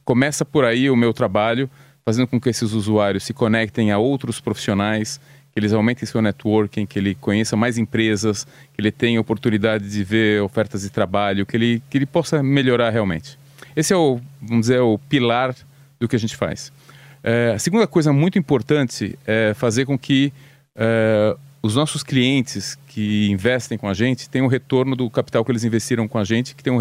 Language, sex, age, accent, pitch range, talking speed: English, male, 30-49, Brazilian, 110-135 Hz, 195 wpm